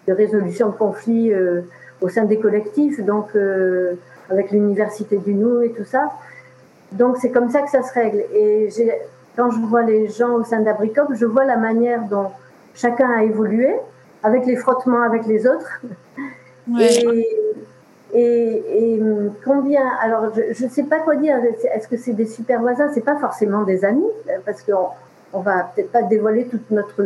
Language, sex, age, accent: French, female, 50-69, French